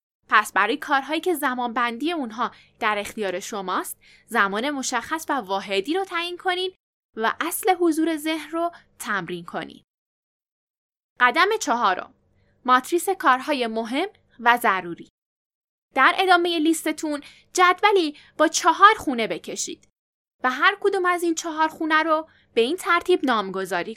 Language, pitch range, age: Persian, 220-335 Hz, 10-29